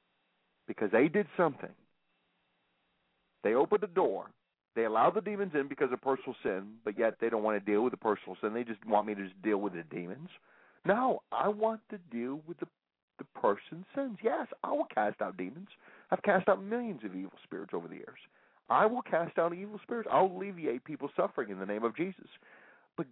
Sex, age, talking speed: male, 40-59, 205 wpm